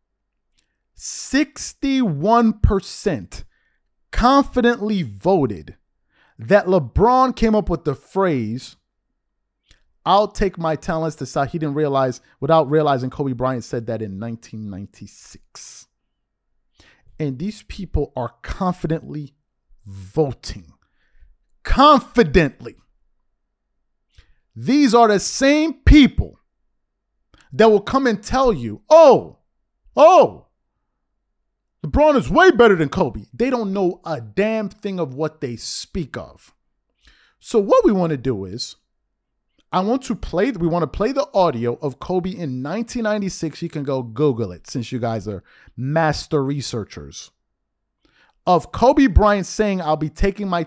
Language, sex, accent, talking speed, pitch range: English, male, American, 125 wpm, 125-205 Hz